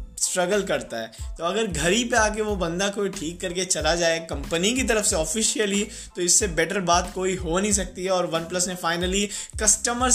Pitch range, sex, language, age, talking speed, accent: 175-210 Hz, male, Hindi, 20-39, 205 wpm, native